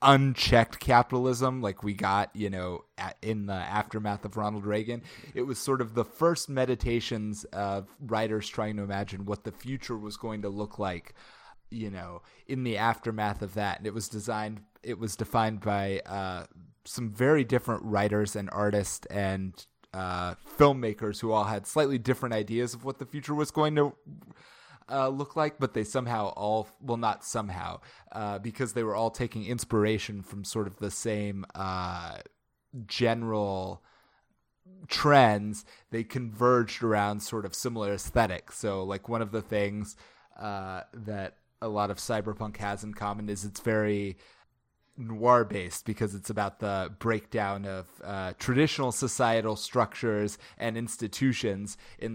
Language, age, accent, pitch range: English, 30-49, American, 100-120 Hz